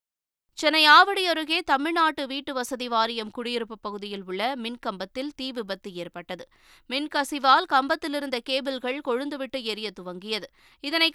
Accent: native